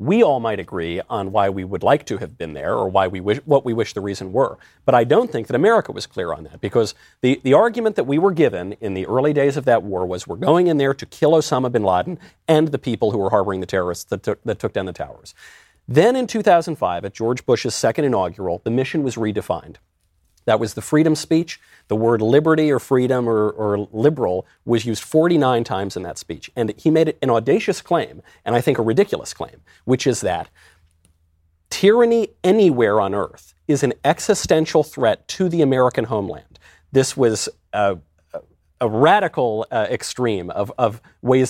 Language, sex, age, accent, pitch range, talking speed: English, male, 40-59, American, 100-150 Hz, 205 wpm